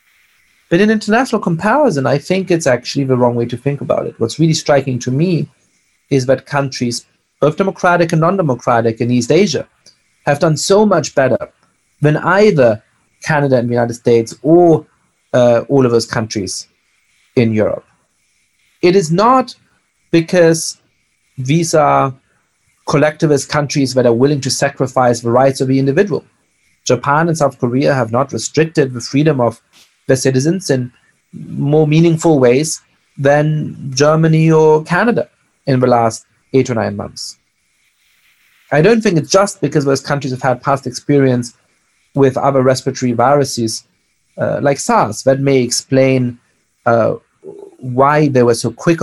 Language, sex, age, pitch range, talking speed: English, male, 30-49, 120-160 Hz, 150 wpm